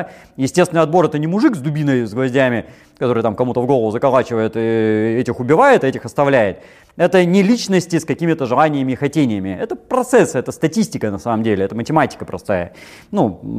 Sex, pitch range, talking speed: male, 130-200 Hz, 175 wpm